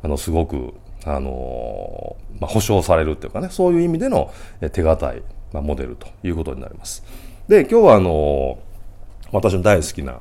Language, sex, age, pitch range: Japanese, male, 40-59, 75-105 Hz